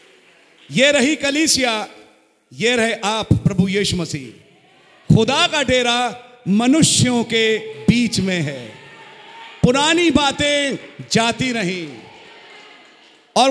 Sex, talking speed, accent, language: male, 100 wpm, Indian, English